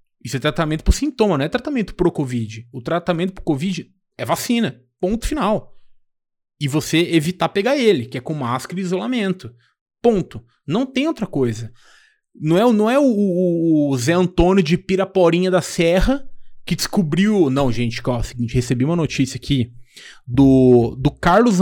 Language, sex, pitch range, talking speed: Portuguese, male, 130-195 Hz, 165 wpm